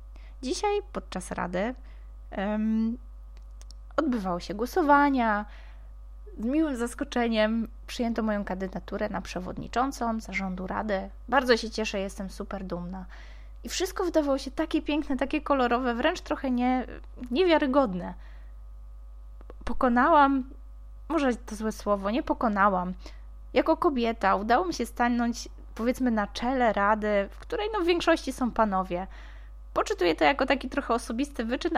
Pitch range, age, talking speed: 190-265 Hz, 20-39, 120 wpm